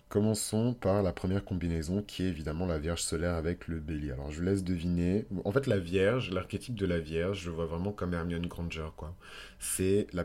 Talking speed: 210 wpm